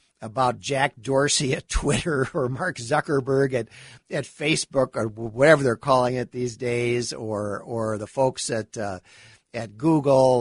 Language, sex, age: English, male, 50-69